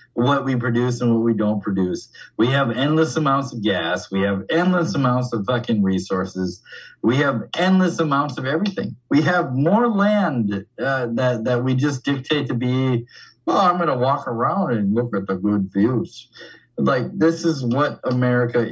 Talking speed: 180 wpm